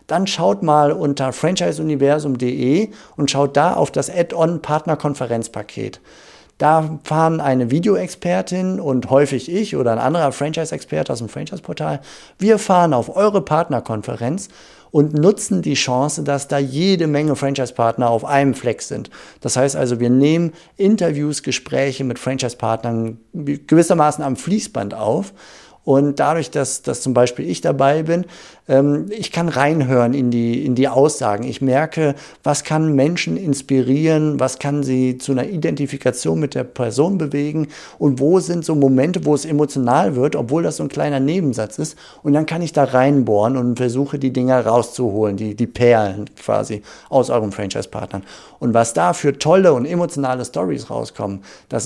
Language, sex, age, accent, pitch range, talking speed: German, male, 50-69, German, 125-155 Hz, 160 wpm